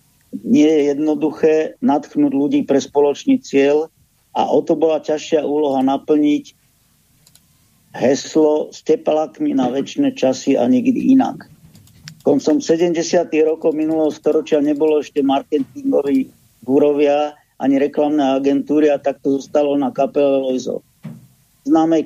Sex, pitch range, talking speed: male, 135-155 Hz, 120 wpm